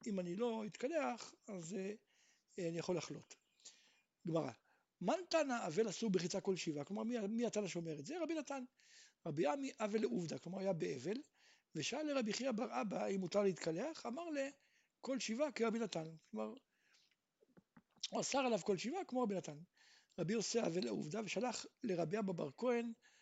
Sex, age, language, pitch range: male, 60-79, Hebrew, 180-255 Hz